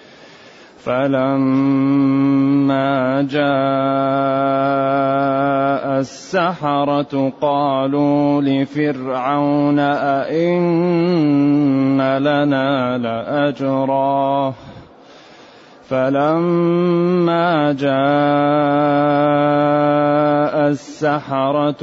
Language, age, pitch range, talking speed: English, 30-49, 135-145 Hz, 30 wpm